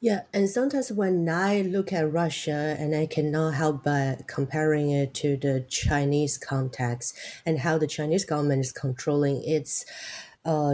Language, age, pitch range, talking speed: English, 30-49, 145-180 Hz, 155 wpm